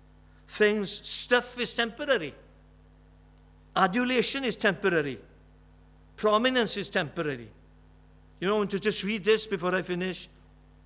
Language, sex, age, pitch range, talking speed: English, male, 60-79, 150-205 Hz, 110 wpm